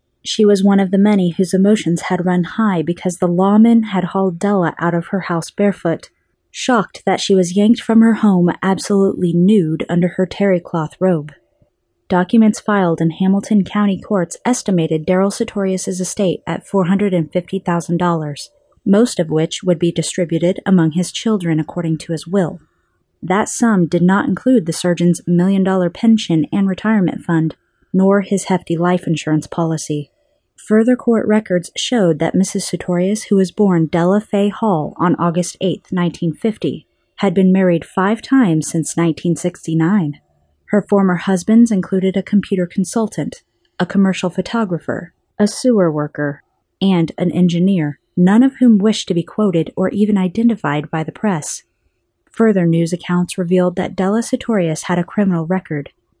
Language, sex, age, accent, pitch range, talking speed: English, female, 30-49, American, 170-205 Hz, 155 wpm